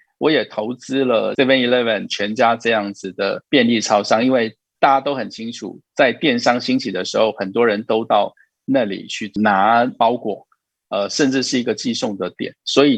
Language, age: Chinese, 50-69